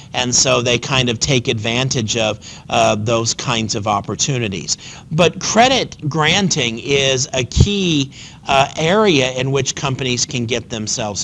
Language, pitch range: English, 125-155 Hz